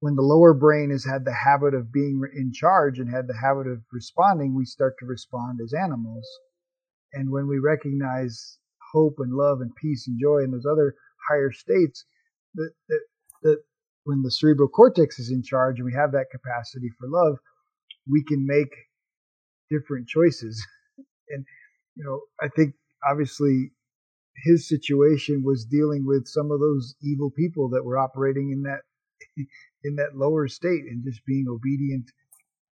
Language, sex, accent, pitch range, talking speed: English, male, American, 130-150 Hz, 170 wpm